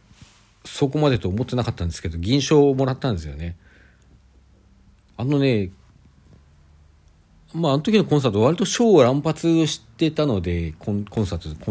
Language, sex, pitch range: Japanese, male, 85-120 Hz